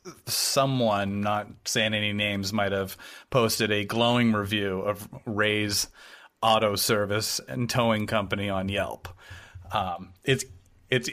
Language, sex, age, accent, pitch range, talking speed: English, male, 30-49, American, 105-125 Hz, 125 wpm